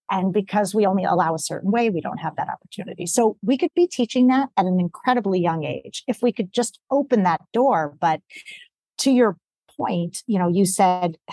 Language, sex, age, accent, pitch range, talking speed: English, female, 40-59, American, 180-230 Hz, 205 wpm